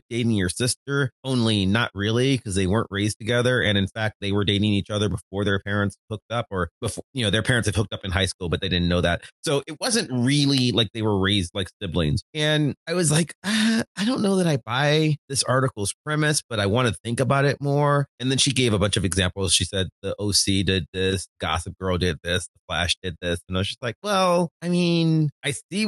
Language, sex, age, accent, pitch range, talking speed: English, male, 30-49, American, 100-150 Hz, 245 wpm